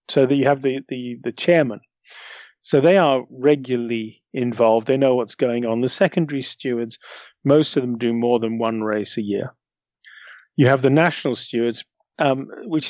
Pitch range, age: 120-150 Hz, 40-59